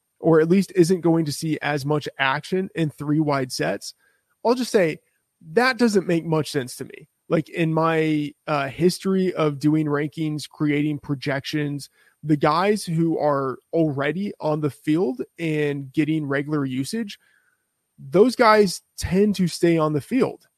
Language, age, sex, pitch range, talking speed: English, 20-39, male, 145-170 Hz, 155 wpm